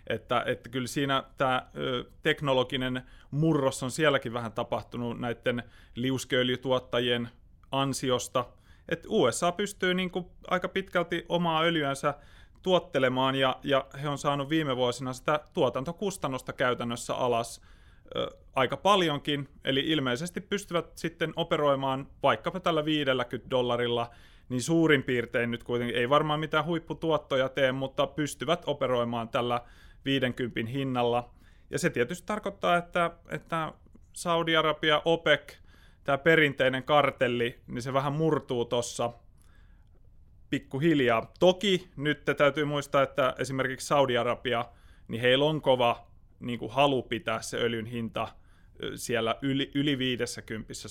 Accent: native